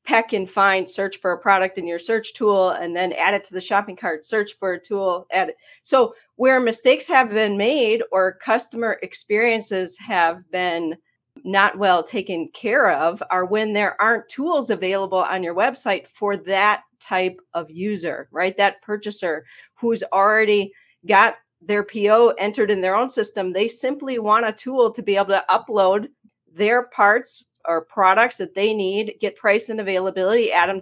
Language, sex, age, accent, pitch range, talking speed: English, female, 40-59, American, 190-230 Hz, 175 wpm